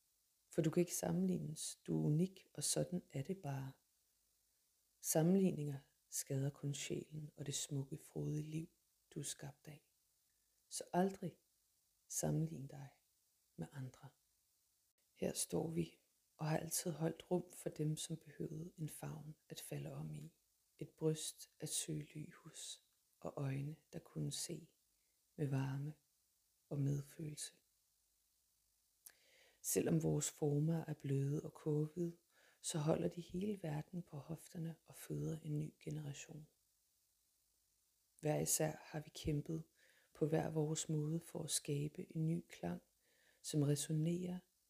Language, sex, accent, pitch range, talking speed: Danish, female, native, 140-165 Hz, 135 wpm